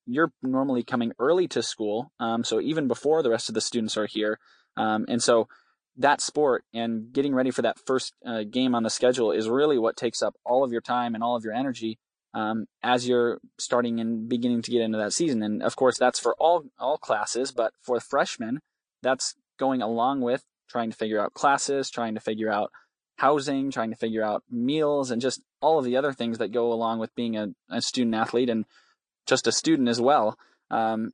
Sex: male